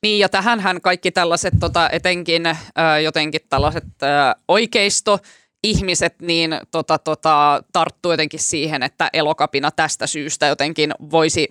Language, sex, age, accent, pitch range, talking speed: Finnish, female, 20-39, native, 160-195 Hz, 125 wpm